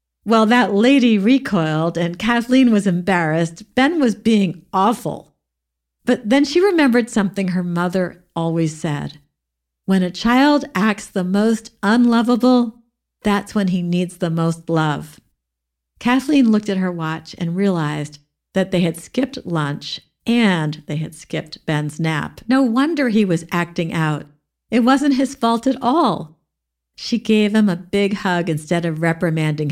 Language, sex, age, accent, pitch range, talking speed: English, female, 50-69, American, 160-230 Hz, 150 wpm